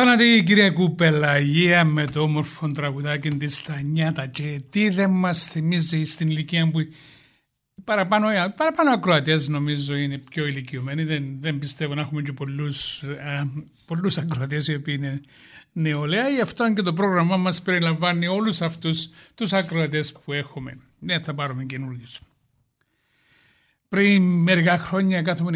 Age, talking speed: 60-79, 145 wpm